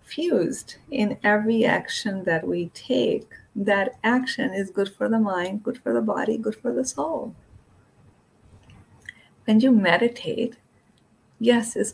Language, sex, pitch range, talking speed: English, female, 195-240 Hz, 135 wpm